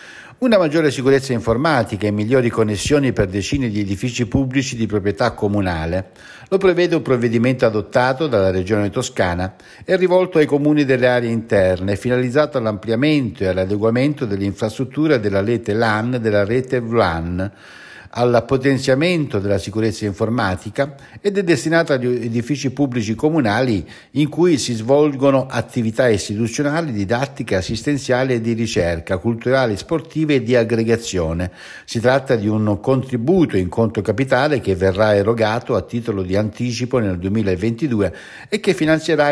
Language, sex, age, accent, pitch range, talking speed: Italian, male, 60-79, native, 105-140 Hz, 135 wpm